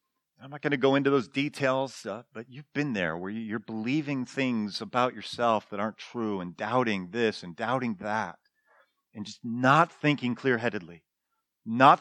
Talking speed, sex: 170 wpm, male